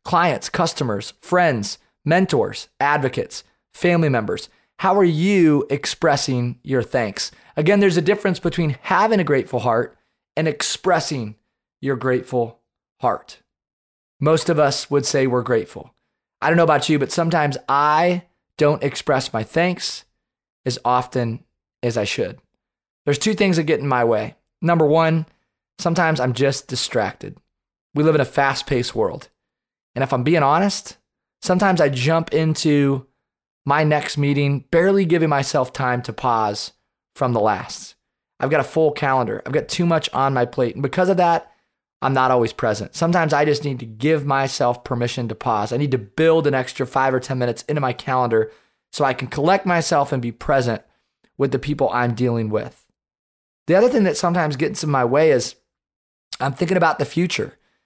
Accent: American